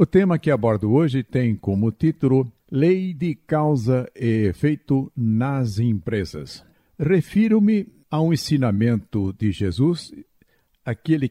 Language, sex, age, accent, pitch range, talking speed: Portuguese, male, 60-79, Brazilian, 105-145 Hz, 115 wpm